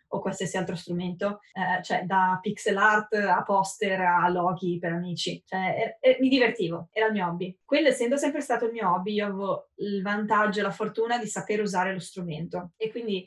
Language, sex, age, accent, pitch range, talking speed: Italian, female, 20-39, native, 180-220 Hz, 205 wpm